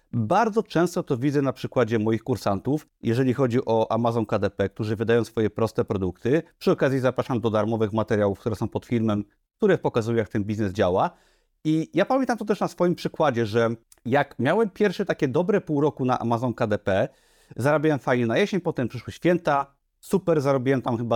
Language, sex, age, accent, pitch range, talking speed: Polish, male, 30-49, native, 115-155 Hz, 180 wpm